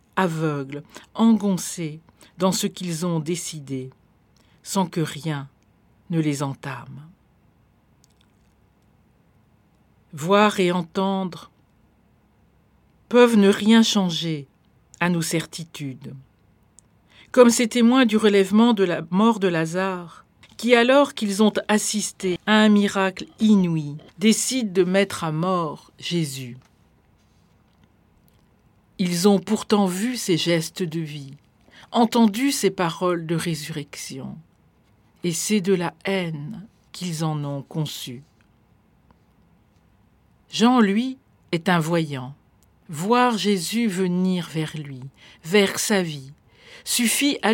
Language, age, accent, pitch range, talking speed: French, 50-69, French, 155-210 Hz, 105 wpm